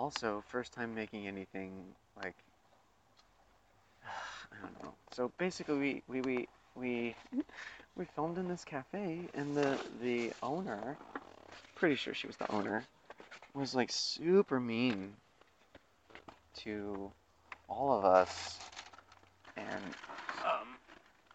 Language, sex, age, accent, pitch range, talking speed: English, male, 30-49, American, 95-125 Hz, 115 wpm